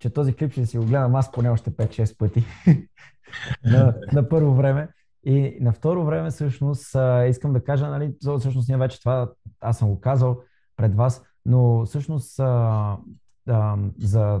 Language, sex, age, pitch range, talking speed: Bulgarian, male, 20-39, 110-130 Hz, 155 wpm